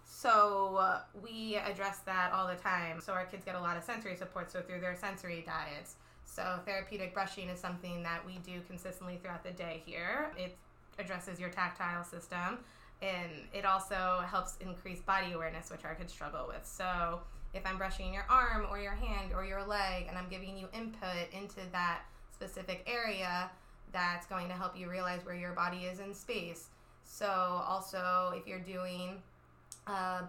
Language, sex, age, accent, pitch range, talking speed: English, female, 20-39, American, 180-200 Hz, 180 wpm